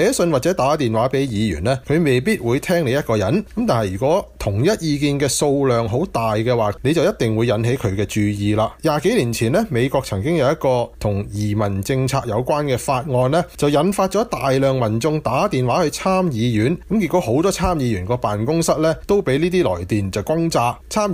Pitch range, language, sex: 110-165 Hz, Chinese, male